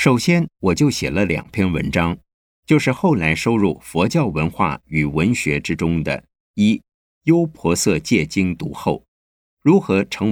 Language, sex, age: Chinese, male, 50-69